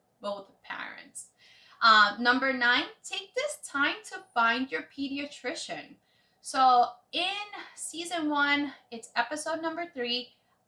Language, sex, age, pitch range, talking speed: English, female, 20-39, 225-295 Hz, 110 wpm